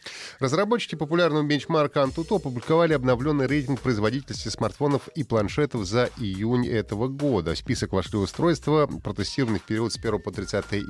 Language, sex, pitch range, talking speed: Russian, male, 105-135 Hz, 145 wpm